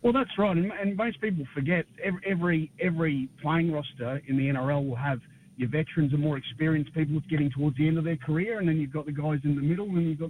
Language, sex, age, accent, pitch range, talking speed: English, male, 30-49, Australian, 135-160 Hz, 250 wpm